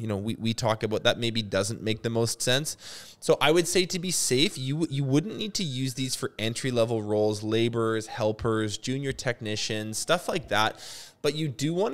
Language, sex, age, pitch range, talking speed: English, male, 20-39, 110-130 Hz, 205 wpm